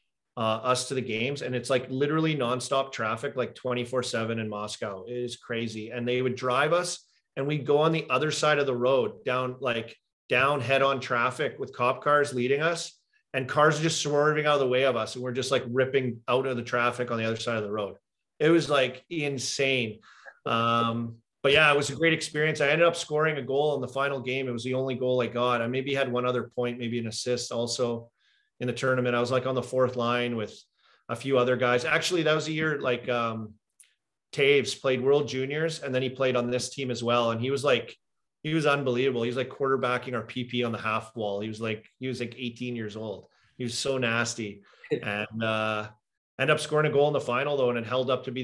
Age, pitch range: 30-49, 115-140 Hz